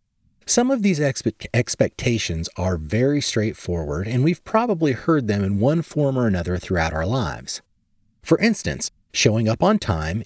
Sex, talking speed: male, 150 wpm